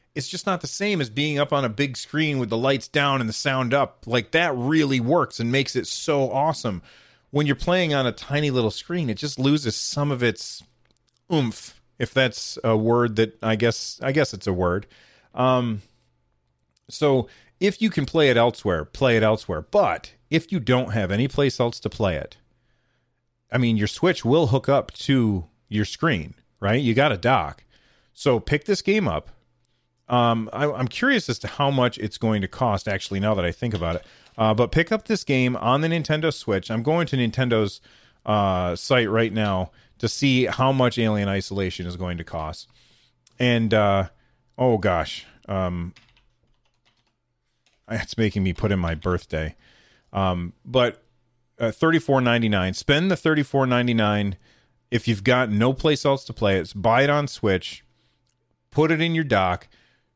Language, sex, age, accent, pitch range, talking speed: English, male, 30-49, American, 105-140 Hz, 185 wpm